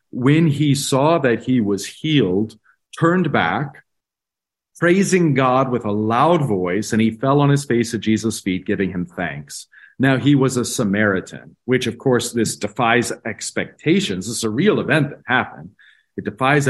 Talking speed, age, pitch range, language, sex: 170 wpm, 40-59, 105-130 Hz, English, male